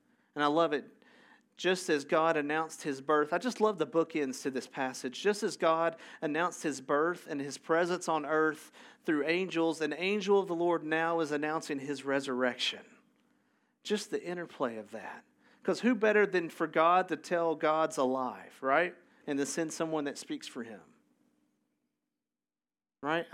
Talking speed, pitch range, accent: 170 wpm, 145-195 Hz, American